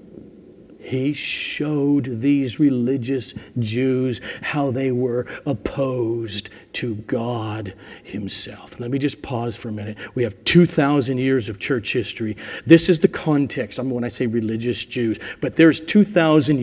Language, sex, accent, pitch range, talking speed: English, male, American, 115-155 Hz, 140 wpm